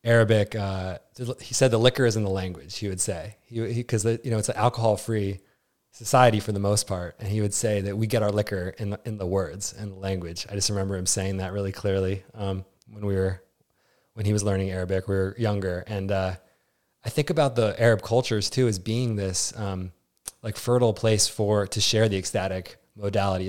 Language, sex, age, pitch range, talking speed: English, male, 20-39, 95-110 Hz, 215 wpm